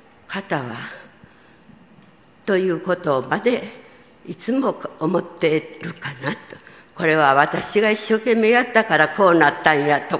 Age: 60-79